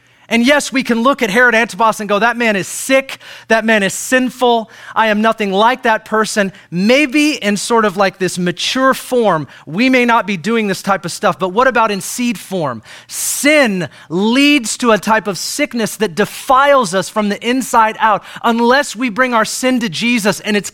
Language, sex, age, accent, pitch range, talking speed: English, male, 30-49, American, 190-245 Hz, 205 wpm